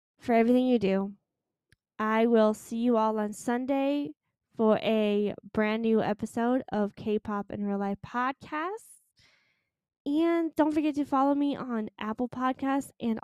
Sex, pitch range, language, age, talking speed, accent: female, 205-260 Hz, English, 10-29, 145 wpm, American